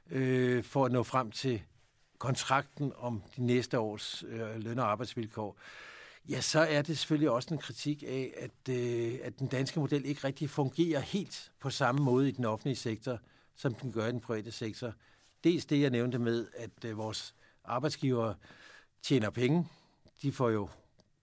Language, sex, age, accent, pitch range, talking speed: Danish, male, 60-79, native, 115-140 Hz, 165 wpm